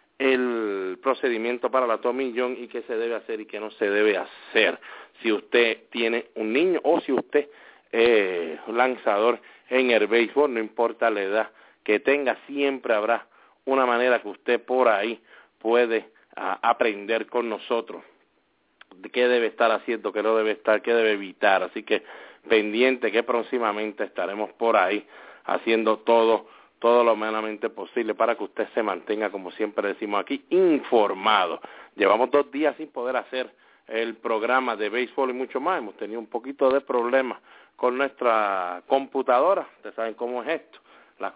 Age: 40-59